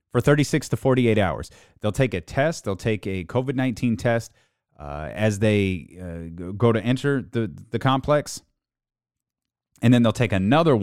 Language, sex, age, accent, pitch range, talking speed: English, male, 30-49, American, 100-135 Hz, 155 wpm